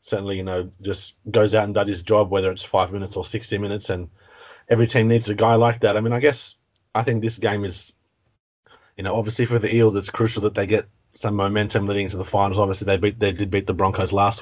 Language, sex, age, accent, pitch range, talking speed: English, male, 30-49, Australian, 100-115 Hz, 250 wpm